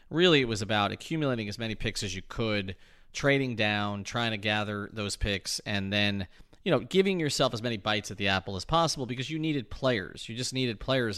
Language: English